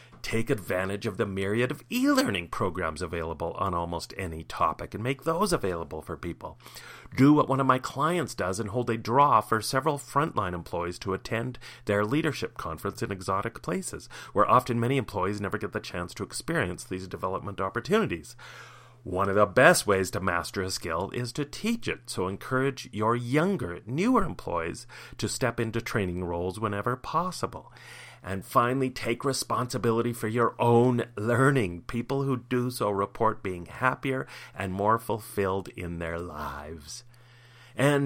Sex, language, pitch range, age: male, English, 95-135 Hz, 40-59